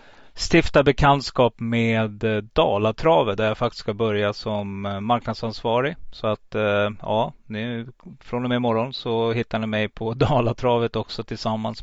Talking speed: 135 wpm